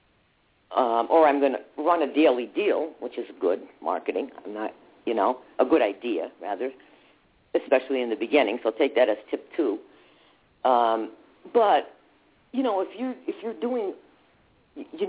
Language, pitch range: English, 140-195 Hz